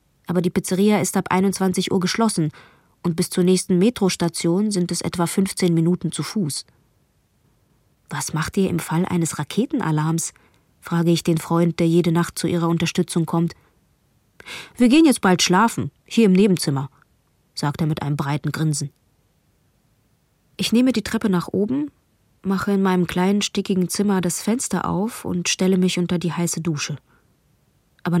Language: German